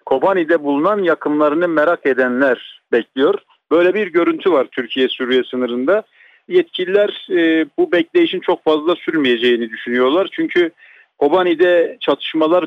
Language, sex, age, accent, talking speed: Turkish, male, 50-69, native, 115 wpm